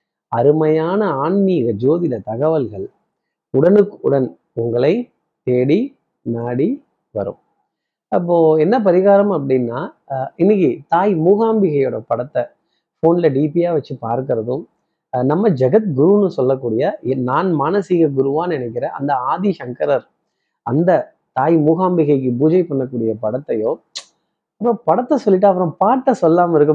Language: Tamil